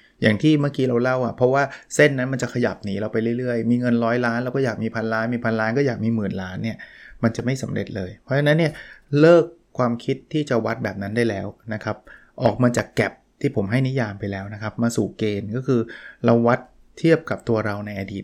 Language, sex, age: Thai, male, 20-39